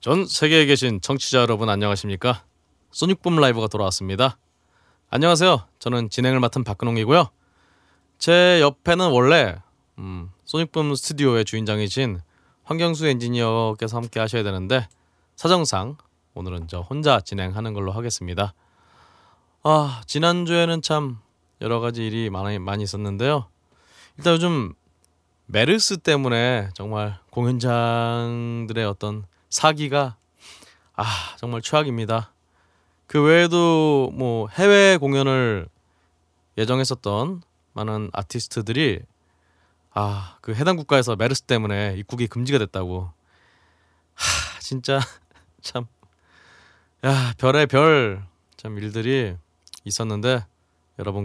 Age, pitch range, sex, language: 20-39, 95-130 Hz, male, Korean